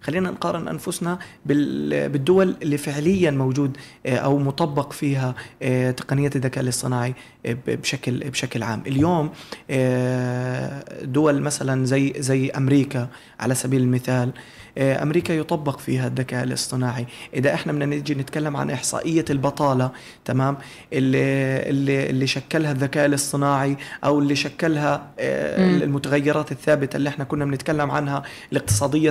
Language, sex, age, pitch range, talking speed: Arabic, male, 20-39, 130-150 Hz, 115 wpm